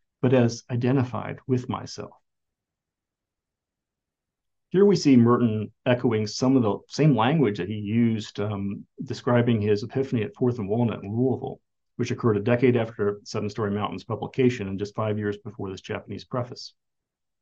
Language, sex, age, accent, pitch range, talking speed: English, male, 40-59, American, 105-125 Hz, 155 wpm